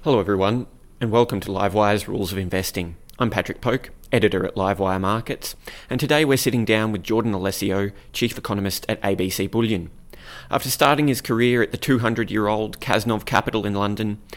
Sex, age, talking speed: male, 20-39, 165 wpm